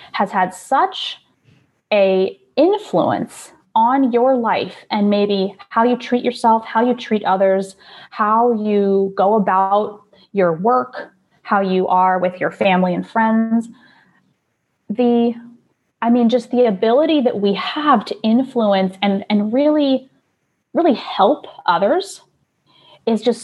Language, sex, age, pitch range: English, female, 20-39, 190-245 Hz